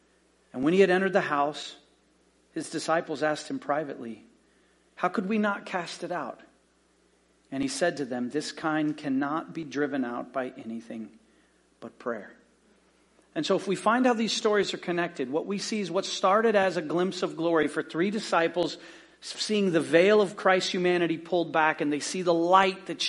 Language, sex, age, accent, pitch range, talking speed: English, male, 40-59, American, 170-235 Hz, 185 wpm